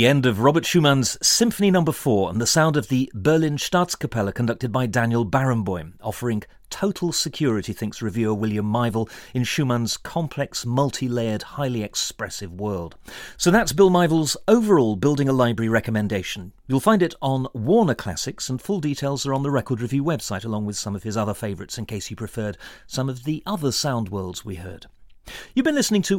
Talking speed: 185 wpm